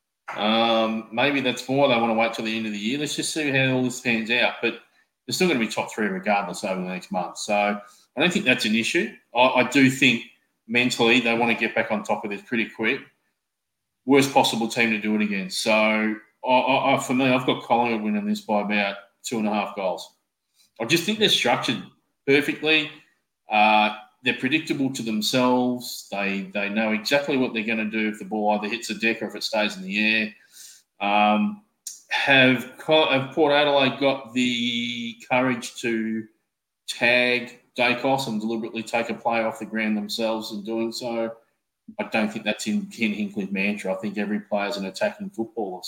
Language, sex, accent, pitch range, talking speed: English, male, Australian, 105-135 Hz, 205 wpm